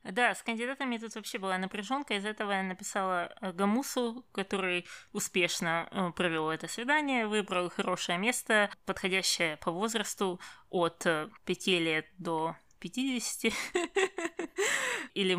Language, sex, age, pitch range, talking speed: Russian, female, 20-39, 185-230 Hz, 115 wpm